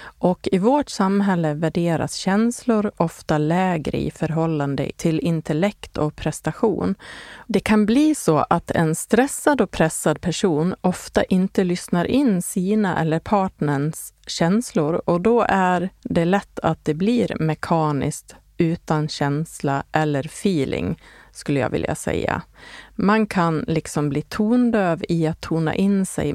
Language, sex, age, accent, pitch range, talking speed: Swedish, female, 30-49, native, 155-195 Hz, 135 wpm